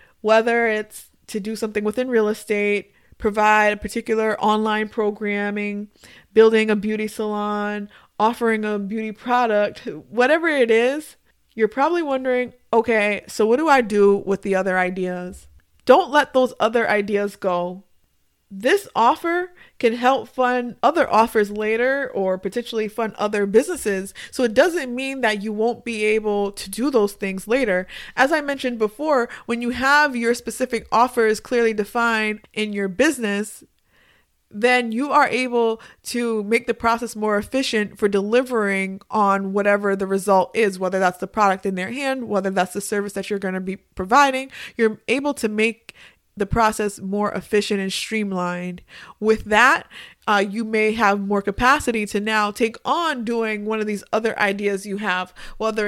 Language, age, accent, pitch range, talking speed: English, 20-39, American, 205-240 Hz, 160 wpm